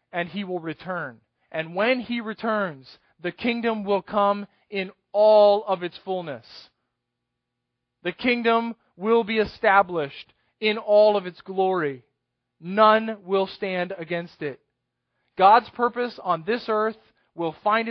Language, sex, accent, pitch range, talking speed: English, male, American, 175-225 Hz, 130 wpm